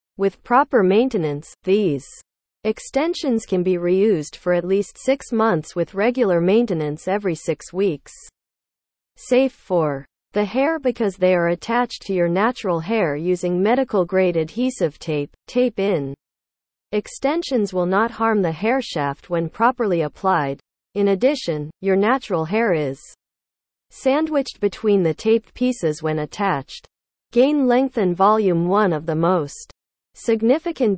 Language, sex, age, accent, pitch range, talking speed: English, female, 40-59, American, 170-235 Hz, 135 wpm